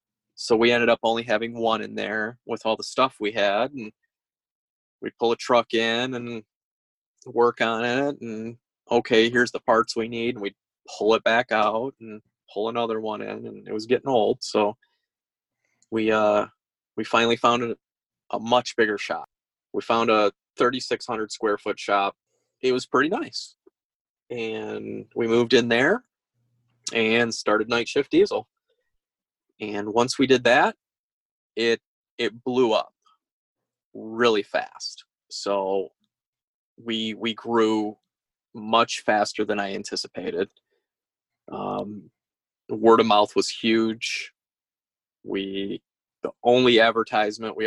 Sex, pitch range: male, 105-120 Hz